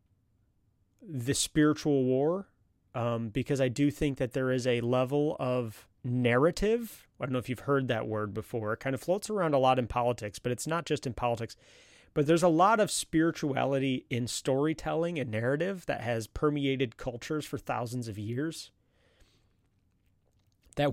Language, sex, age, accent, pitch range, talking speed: English, male, 30-49, American, 105-140 Hz, 165 wpm